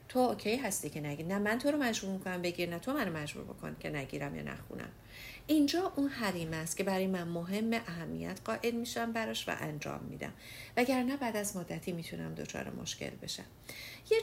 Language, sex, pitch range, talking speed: English, female, 165-255 Hz, 195 wpm